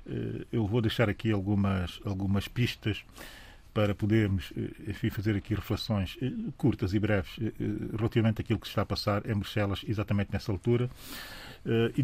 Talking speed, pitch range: 145 wpm, 105-130 Hz